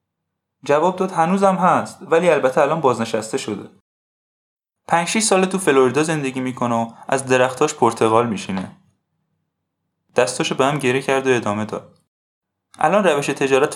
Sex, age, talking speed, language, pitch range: male, 20-39, 140 wpm, Persian, 115-165 Hz